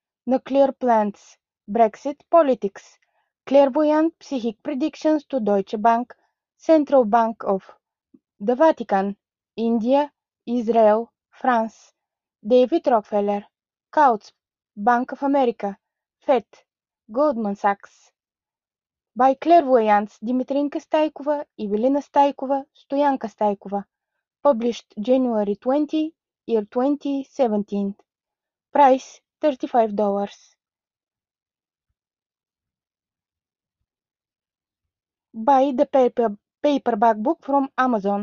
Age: 20-39